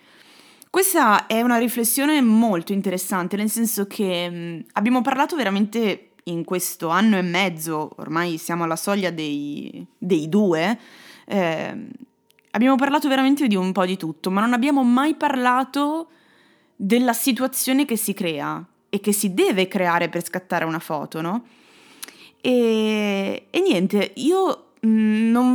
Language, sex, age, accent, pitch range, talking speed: Italian, female, 20-39, native, 180-240 Hz, 135 wpm